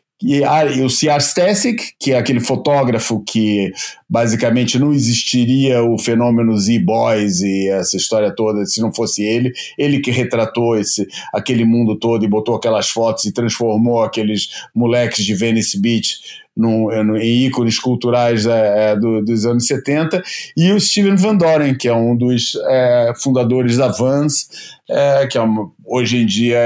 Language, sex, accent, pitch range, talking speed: Portuguese, male, Brazilian, 110-145 Hz, 160 wpm